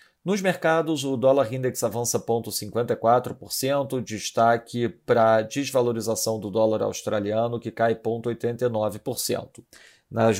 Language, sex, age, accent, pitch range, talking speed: Portuguese, male, 40-59, Brazilian, 110-130 Hz, 105 wpm